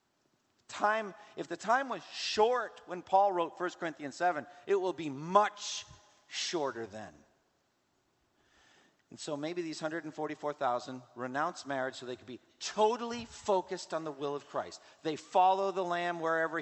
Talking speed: 150 wpm